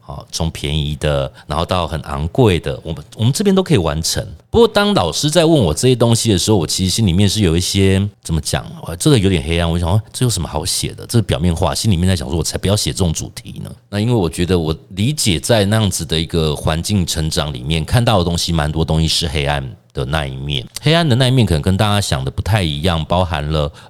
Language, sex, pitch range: Chinese, male, 80-110 Hz